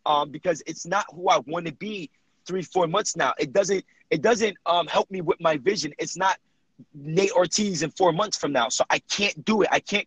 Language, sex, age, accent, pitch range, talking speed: English, male, 30-49, American, 165-200 Hz, 230 wpm